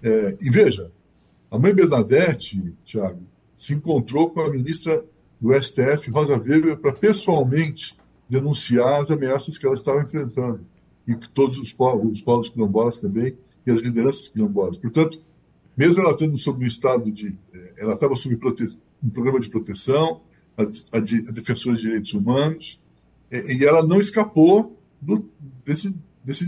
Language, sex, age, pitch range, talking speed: Portuguese, male, 60-79, 115-150 Hz, 150 wpm